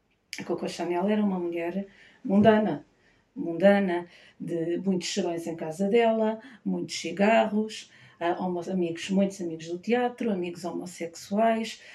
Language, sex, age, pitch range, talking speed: Portuguese, female, 50-69, 175-205 Hz, 115 wpm